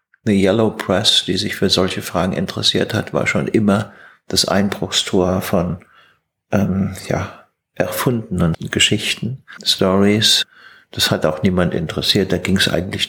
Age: 50-69